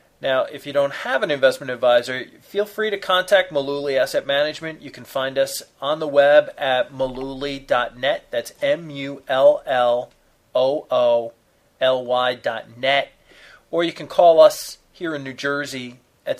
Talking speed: 155 wpm